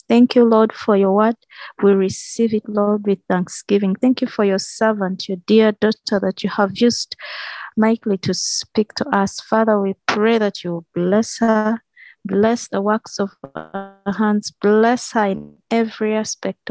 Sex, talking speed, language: female, 170 wpm, English